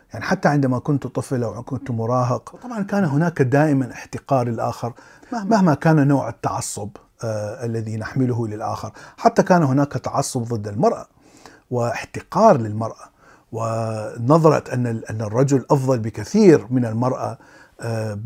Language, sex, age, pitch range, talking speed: Arabic, male, 50-69, 115-150 Hz, 130 wpm